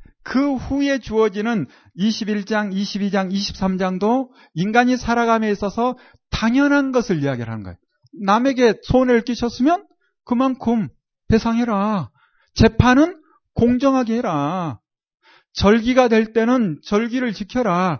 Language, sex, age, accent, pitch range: Korean, male, 40-59, native, 180-250 Hz